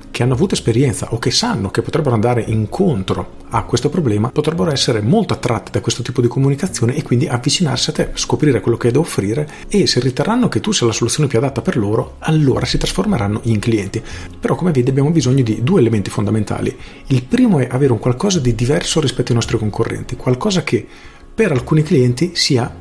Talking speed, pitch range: 205 wpm, 115-145 Hz